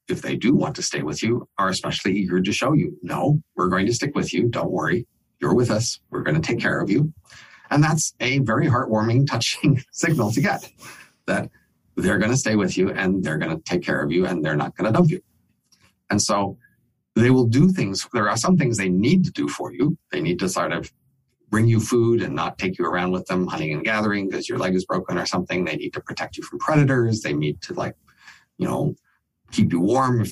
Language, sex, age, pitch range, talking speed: English, male, 50-69, 95-130 Hz, 240 wpm